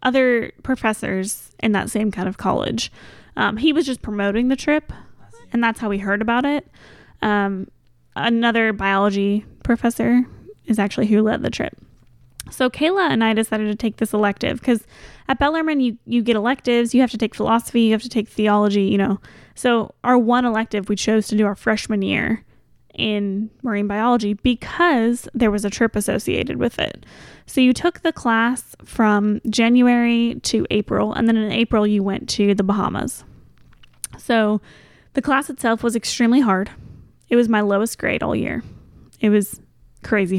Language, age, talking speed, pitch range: English, 10-29, 175 wpm, 205-245 Hz